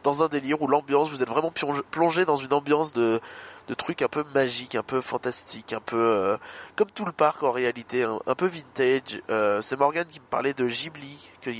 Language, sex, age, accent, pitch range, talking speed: French, male, 20-39, French, 120-145 Hz, 220 wpm